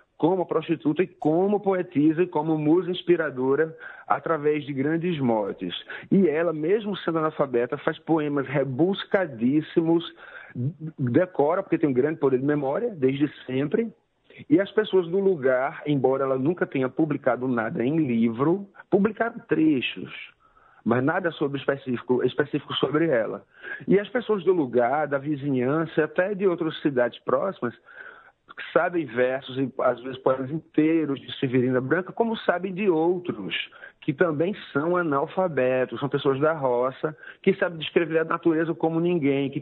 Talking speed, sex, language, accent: 145 wpm, male, Portuguese, Brazilian